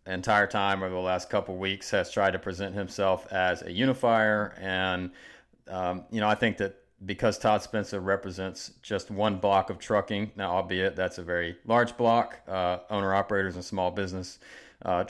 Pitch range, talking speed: 90-105 Hz, 185 wpm